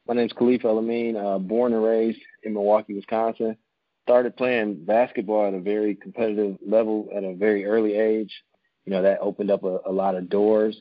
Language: English